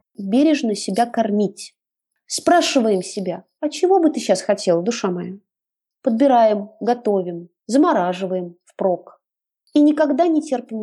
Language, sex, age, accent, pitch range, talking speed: Russian, female, 30-49, native, 205-275 Hz, 115 wpm